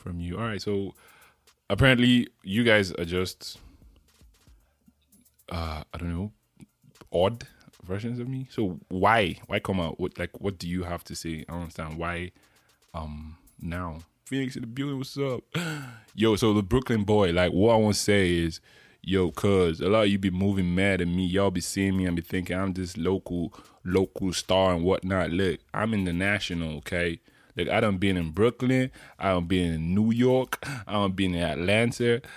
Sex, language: male, English